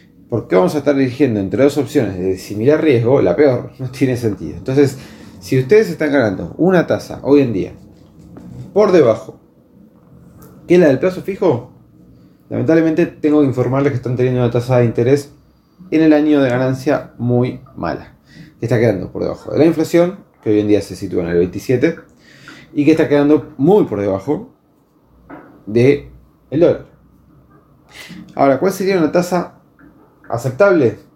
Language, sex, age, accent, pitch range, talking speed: Spanish, male, 30-49, Argentinian, 120-150 Hz, 165 wpm